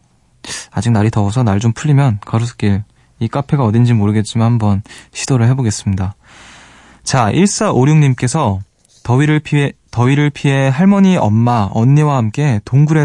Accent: native